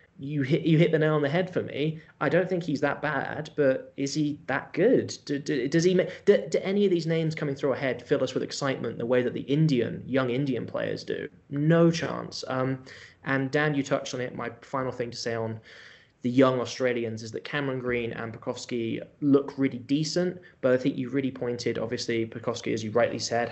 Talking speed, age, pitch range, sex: 225 wpm, 10-29, 120-150 Hz, male